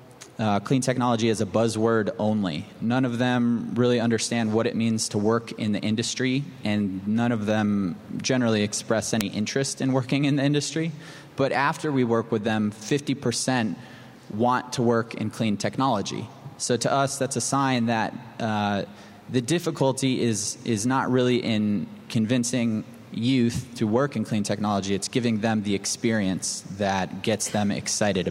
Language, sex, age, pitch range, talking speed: English, male, 20-39, 110-125 Hz, 165 wpm